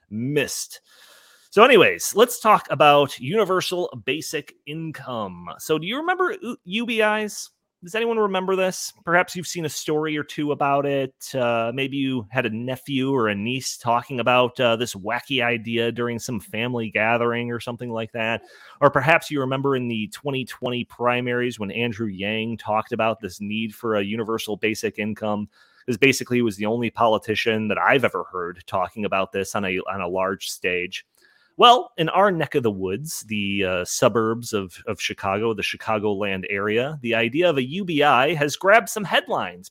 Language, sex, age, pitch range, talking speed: English, male, 30-49, 110-150 Hz, 170 wpm